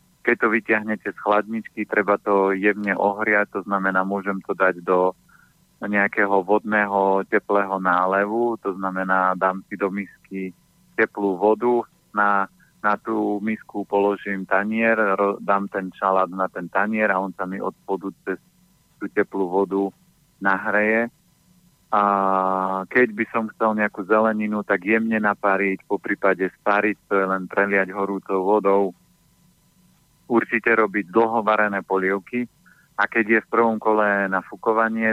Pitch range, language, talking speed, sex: 95-110 Hz, Slovak, 140 wpm, male